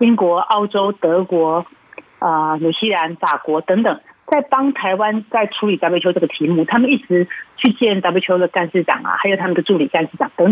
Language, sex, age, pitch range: Chinese, female, 40-59, 180-255 Hz